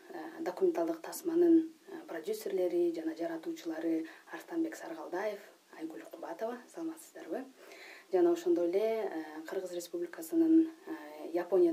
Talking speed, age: 75 wpm, 20-39